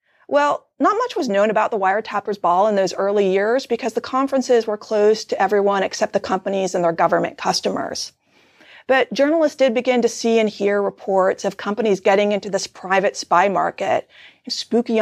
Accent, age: American, 40-59